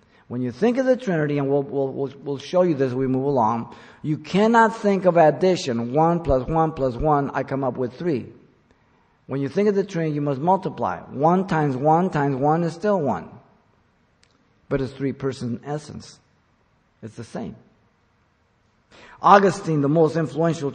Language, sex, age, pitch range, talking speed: English, male, 50-69, 130-165 Hz, 180 wpm